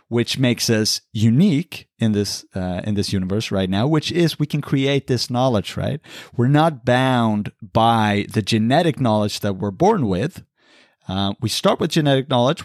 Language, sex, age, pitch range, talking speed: English, male, 30-49, 105-140 Hz, 175 wpm